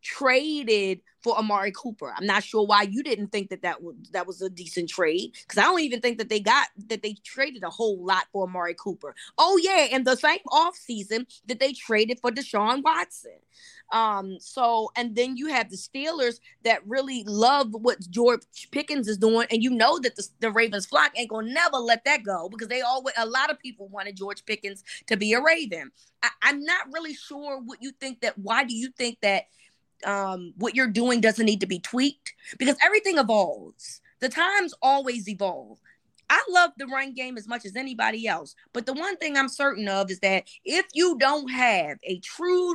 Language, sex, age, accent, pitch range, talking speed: English, female, 20-39, American, 200-275 Hz, 205 wpm